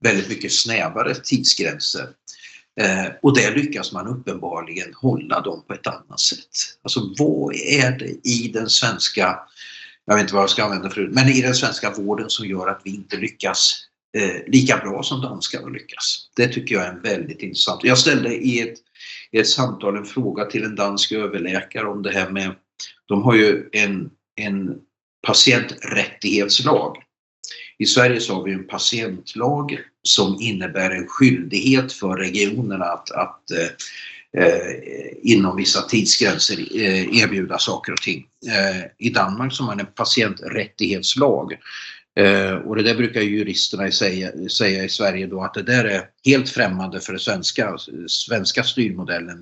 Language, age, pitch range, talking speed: Swedish, 50-69, 95-125 Hz, 160 wpm